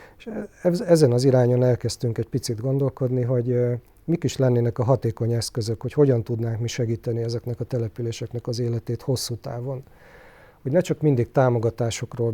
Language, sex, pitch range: Hungarian, male, 115-130 Hz